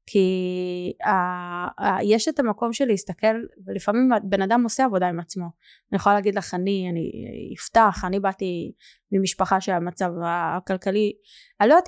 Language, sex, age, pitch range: Hebrew, female, 20-39, 185-230 Hz